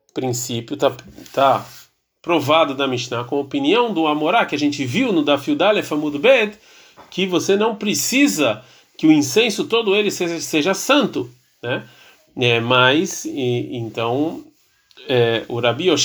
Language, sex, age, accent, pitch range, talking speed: Portuguese, male, 40-59, Brazilian, 130-180 Hz, 145 wpm